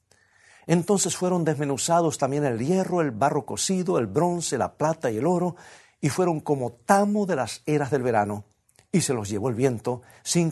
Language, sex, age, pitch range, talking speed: Spanish, male, 50-69, 110-170 Hz, 185 wpm